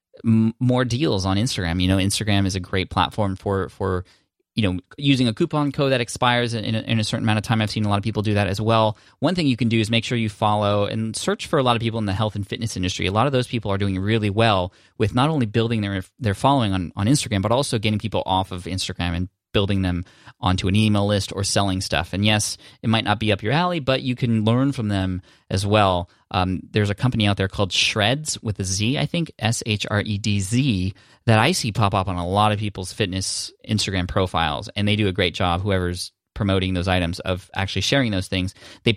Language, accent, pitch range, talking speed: English, American, 95-120 Hz, 245 wpm